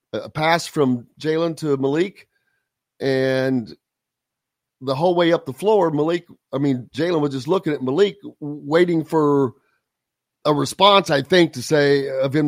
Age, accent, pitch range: 50-69, American, 135-190 Hz